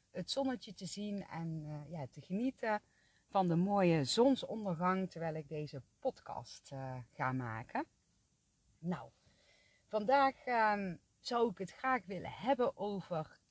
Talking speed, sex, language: 135 wpm, female, Dutch